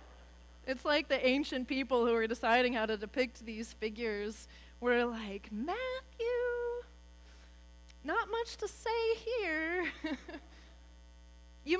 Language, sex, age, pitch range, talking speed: English, female, 30-49, 185-280 Hz, 110 wpm